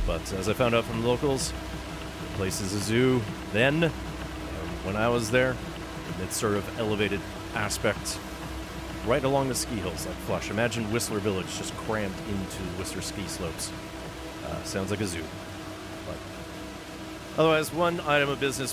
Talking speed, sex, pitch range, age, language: 165 wpm, male, 105-150 Hz, 40-59, English